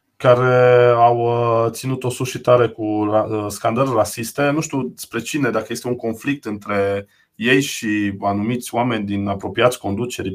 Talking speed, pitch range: 140 wpm, 105-130 Hz